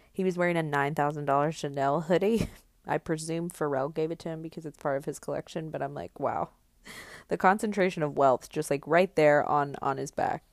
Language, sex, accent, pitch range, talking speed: English, female, American, 155-215 Hz, 205 wpm